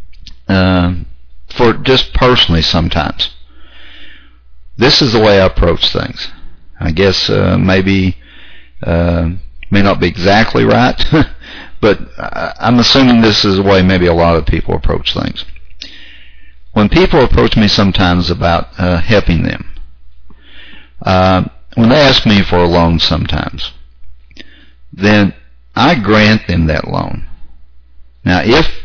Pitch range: 65-100 Hz